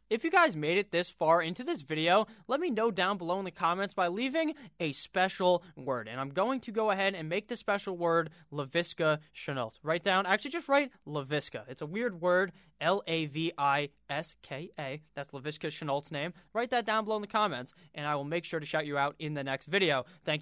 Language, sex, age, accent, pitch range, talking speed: English, male, 20-39, American, 150-200 Hz, 210 wpm